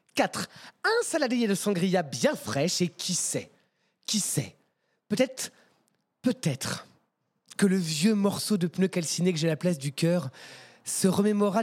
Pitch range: 145-195 Hz